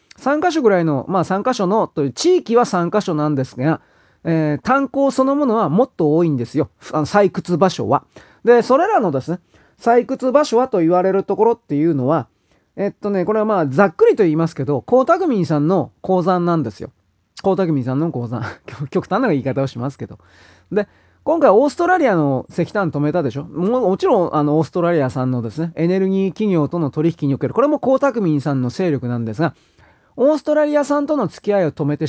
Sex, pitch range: male, 145-215 Hz